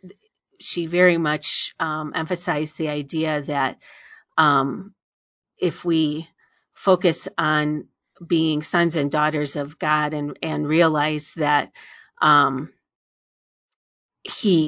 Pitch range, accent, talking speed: 150-170 Hz, American, 100 wpm